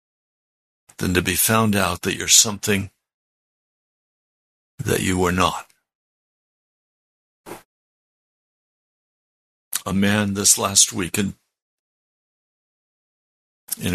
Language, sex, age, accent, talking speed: English, male, 60-79, American, 75 wpm